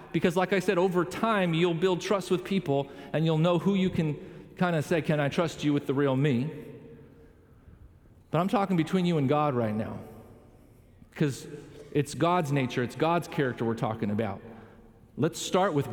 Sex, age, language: male, 40-59, English